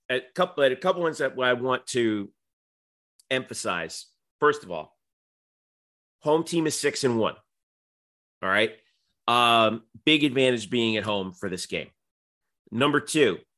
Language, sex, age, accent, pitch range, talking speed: English, male, 40-59, American, 105-145 Hz, 140 wpm